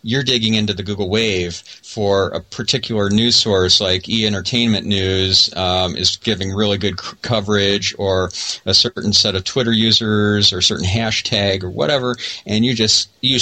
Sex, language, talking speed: male, English, 170 wpm